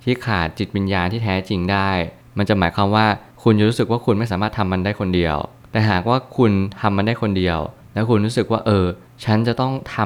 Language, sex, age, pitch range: Thai, male, 20-39, 95-115 Hz